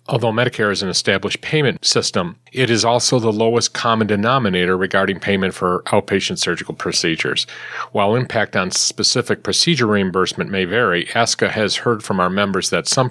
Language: English